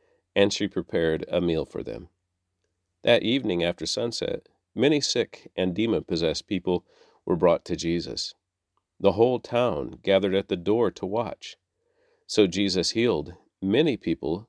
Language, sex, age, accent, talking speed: English, male, 50-69, American, 140 wpm